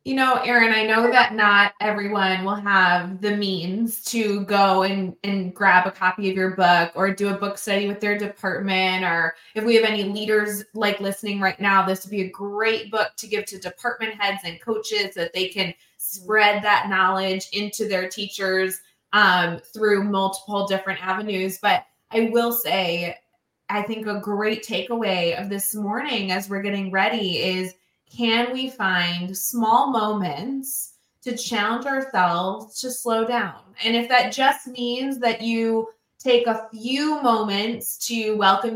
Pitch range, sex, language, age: 190-225 Hz, female, English, 20-39